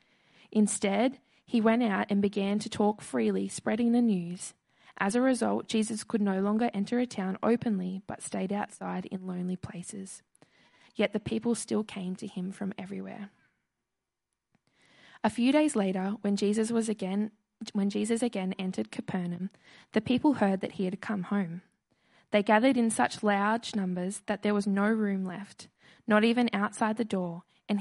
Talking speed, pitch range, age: 165 wpm, 190-230 Hz, 20-39